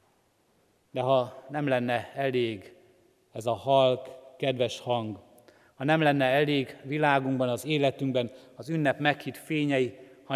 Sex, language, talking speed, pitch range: male, Hungarian, 125 wpm, 115-135 Hz